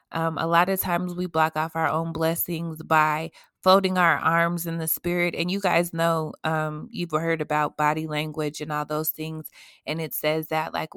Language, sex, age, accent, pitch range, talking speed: English, female, 20-39, American, 155-175 Hz, 205 wpm